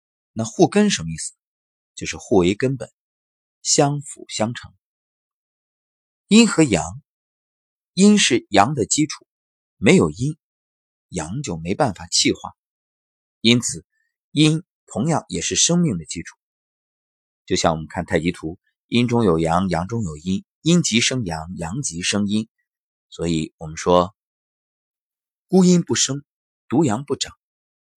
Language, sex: Chinese, male